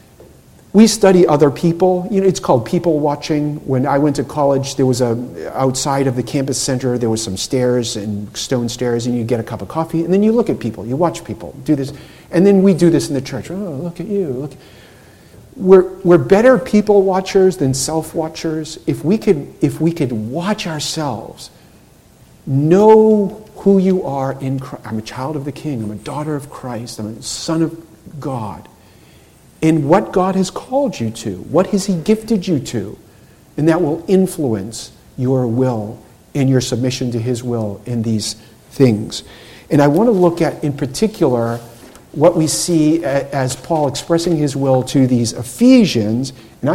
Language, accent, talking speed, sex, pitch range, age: English, American, 185 wpm, male, 125-175 Hz, 50-69